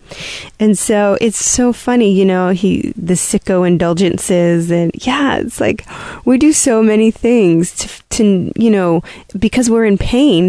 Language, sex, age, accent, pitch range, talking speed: English, female, 20-39, American, 175-220 Hz, 160 wpm